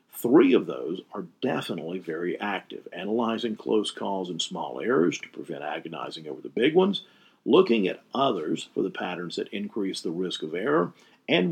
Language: English